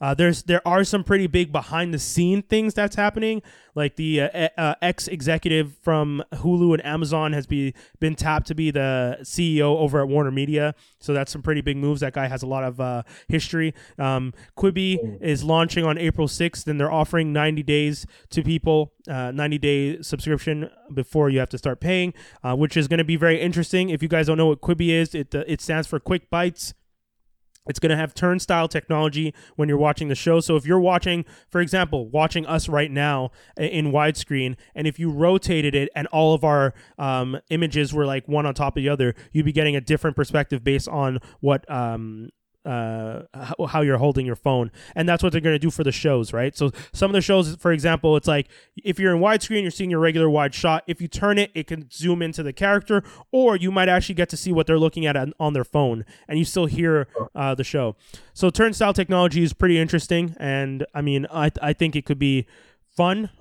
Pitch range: 140-170 Hz